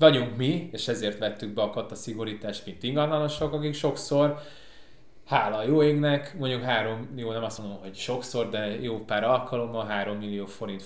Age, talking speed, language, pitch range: 20-39, 165 wpm, Hungarian, 110-140 Hz